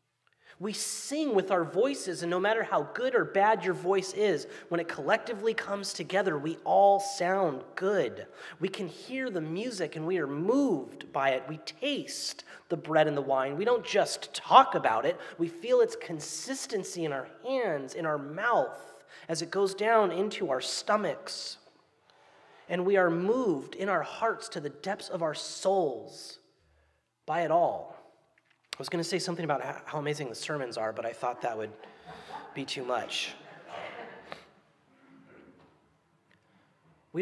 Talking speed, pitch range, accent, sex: 165 wpm, 155-210 Hz, American, male